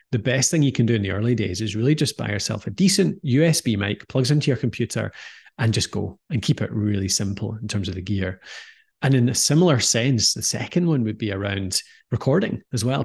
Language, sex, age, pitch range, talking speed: English, male, 30-49, 110-135 Hz, 230 wpm